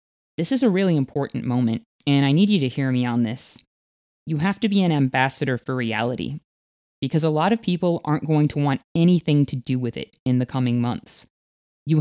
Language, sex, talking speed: English, female, 210 wpm